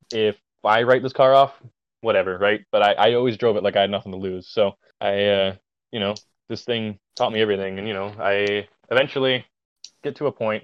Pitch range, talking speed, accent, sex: 100-125 Hz, 220 wpm, American, male